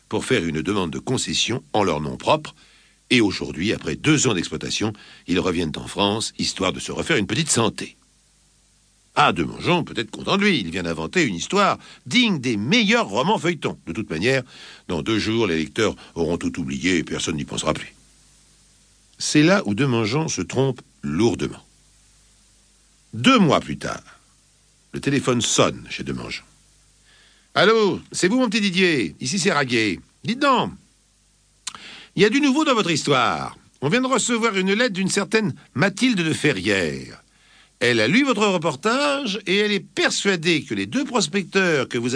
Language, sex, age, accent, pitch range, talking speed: French, male, 60-79, French, 140-220 Hz, 170 wpm